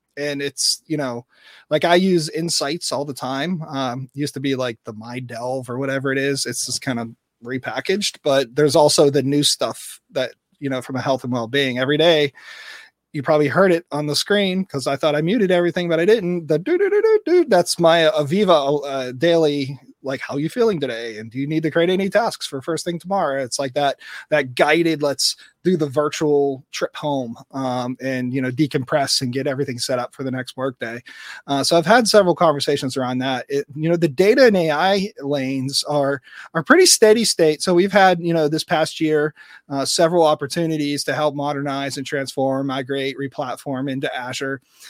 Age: 30-49